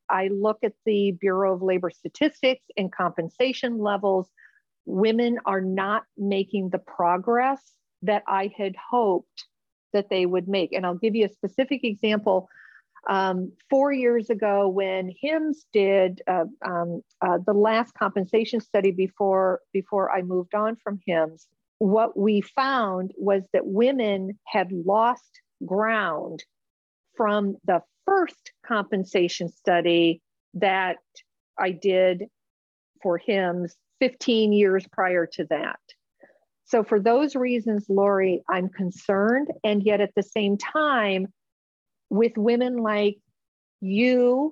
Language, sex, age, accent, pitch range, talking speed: English, female, 50-69, American, 195-240 Hz, 125 wpm